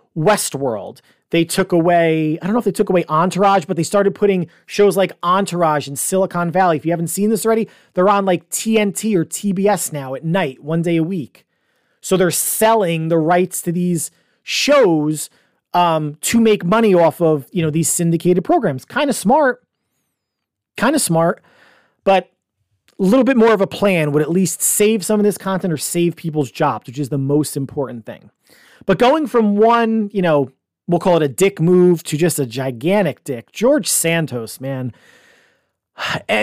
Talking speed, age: 185 wpm, 30-49